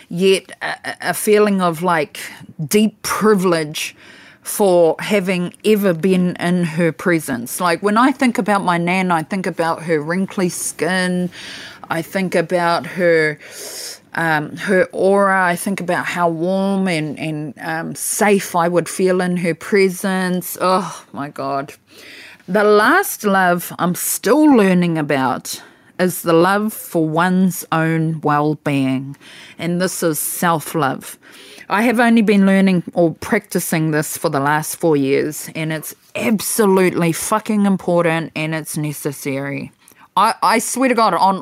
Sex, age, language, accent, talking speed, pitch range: female, 30-49, English, Australian, 140 wpm, 165-205 Hz